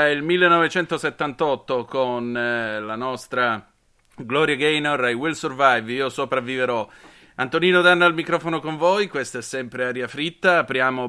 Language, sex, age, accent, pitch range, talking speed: Italian, male, 30-49, native, 115-145 Hz, 135 wpm